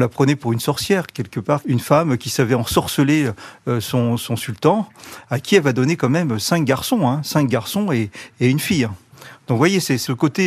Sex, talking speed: male, 210 wpm